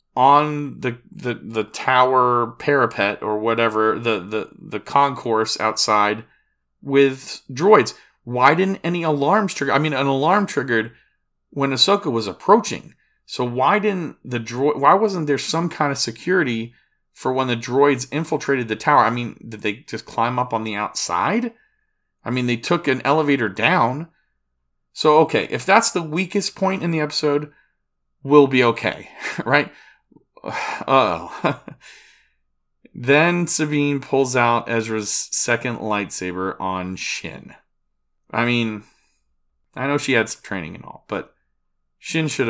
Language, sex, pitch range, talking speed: English, male, 105-145 Hz, 145 wpm